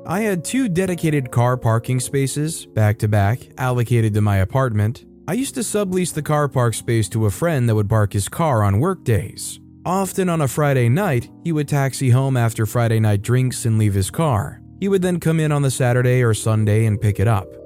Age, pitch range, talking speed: 20-39, 110-150 Hz, 205 wpm